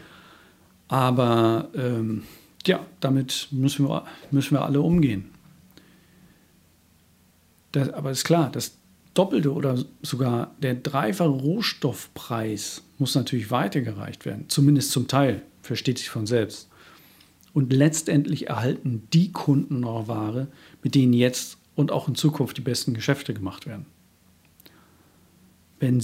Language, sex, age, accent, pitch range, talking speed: German, male, 50-69, German, 120-150 Hz, 115 wpm